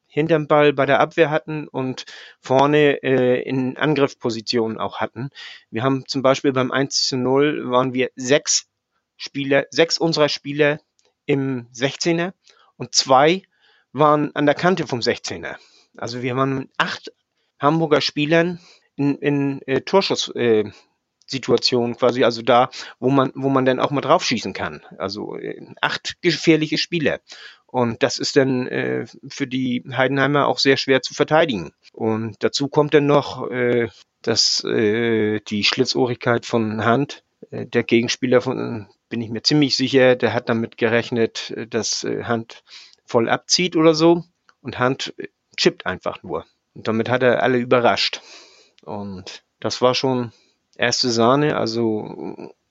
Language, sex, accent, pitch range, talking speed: German, male, German, 120-145 Hz, 145 wpm